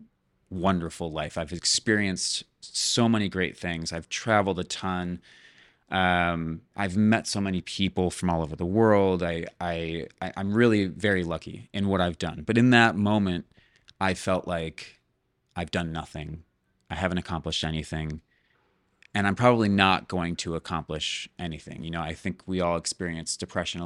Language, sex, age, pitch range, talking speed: English, male, 30-49, 85-105 Hz, 160 wpm